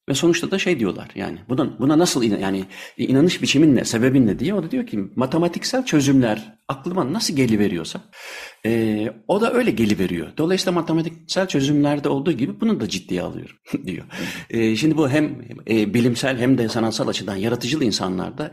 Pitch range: 110-150 Hz